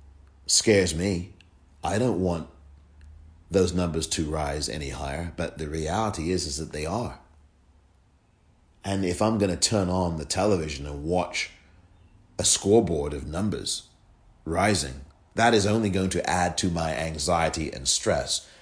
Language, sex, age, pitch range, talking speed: English, male, 40-59, 80-100 Hz, 150 wpm